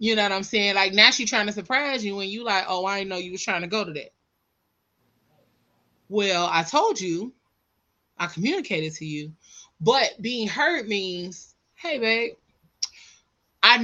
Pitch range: 185-245 Hz